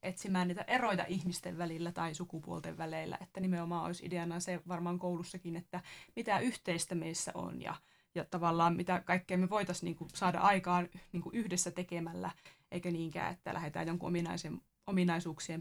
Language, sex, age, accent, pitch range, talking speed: Finnish, female, 20-39, native, 170-185 Hz, 140 wpm